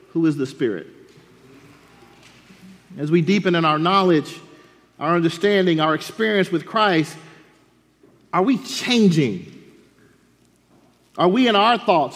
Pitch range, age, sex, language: 150-200 Hz, 40-59, male, English